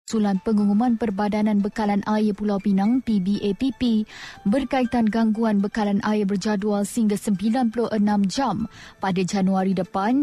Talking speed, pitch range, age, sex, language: 110 wpm, 200-235 Hz, 20-39, female, Malay